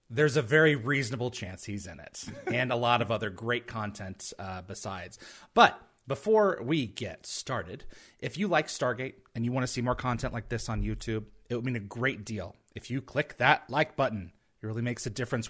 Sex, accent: male, American